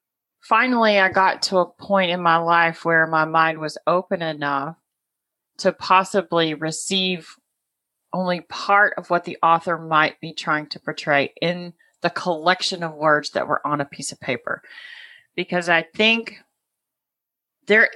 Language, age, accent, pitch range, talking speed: English, 40-59, American, 165-200 Hz, 150 wpm